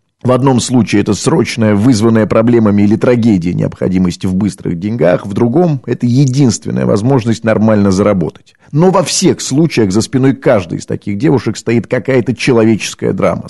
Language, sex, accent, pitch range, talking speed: Russian, male, native, 110-140 Hz, 150 wpm